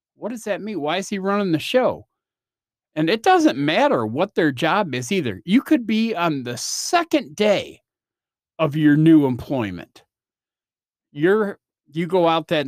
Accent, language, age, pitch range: American, English, 40-59, 135-205 Hz